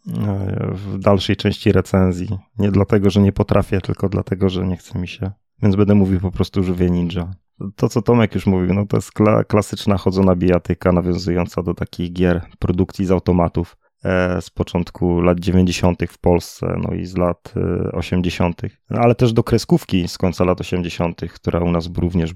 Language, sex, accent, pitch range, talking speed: Polish, male, native, 90-105 Hz, 175 wpm